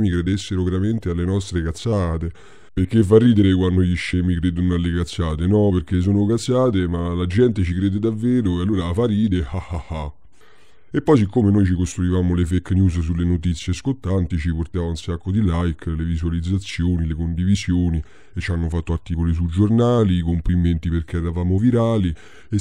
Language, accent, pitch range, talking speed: Italian, native, 85-100 Hz, 170 wpm